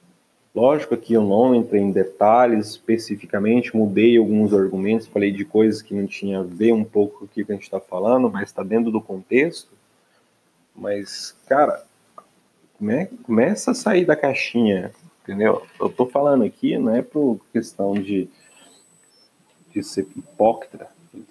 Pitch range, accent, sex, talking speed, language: 95-110 Hz, Brazilian, male, 160 wpm, Portuguese